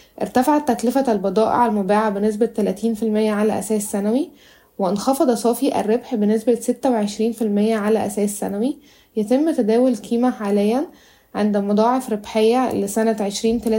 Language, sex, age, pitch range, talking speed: Arabic, female, 10-29, 210-250 Hz, 110 wpm